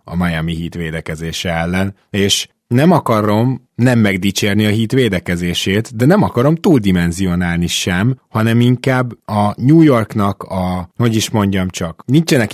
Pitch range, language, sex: 95-125 Hz, Hungarian, male